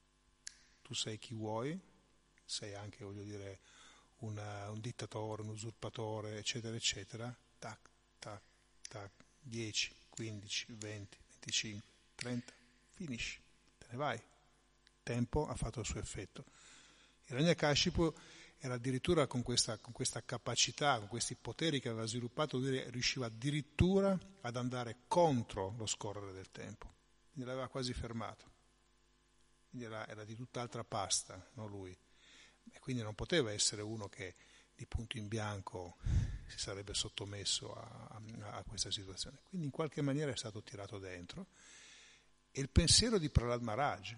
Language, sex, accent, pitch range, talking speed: Italian, male, native, 105-125 Hz, 140 wpm